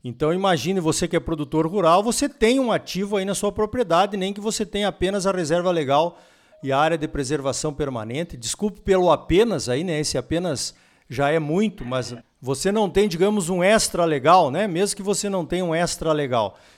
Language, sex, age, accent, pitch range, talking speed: Portuguese, male, 50-69, Brazilian, 150-205 Hz, 200 wpm